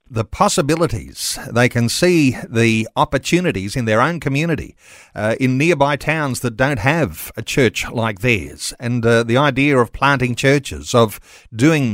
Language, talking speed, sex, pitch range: English, 155 wpm, male, 115-150 Hz